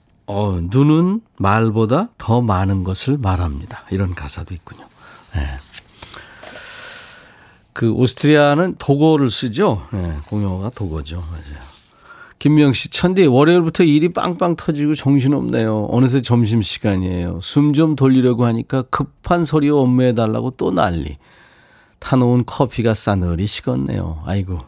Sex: male